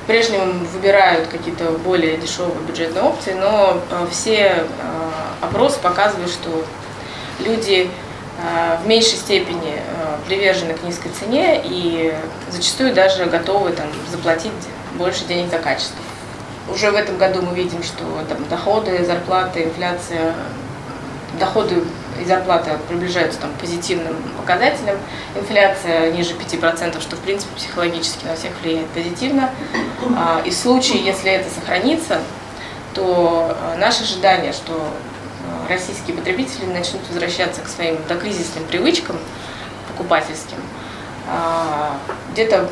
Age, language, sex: 20-39, Russian, female